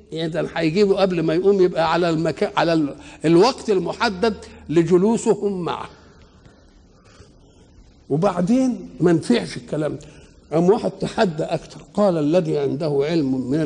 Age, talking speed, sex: 60-79, 120 wpm, male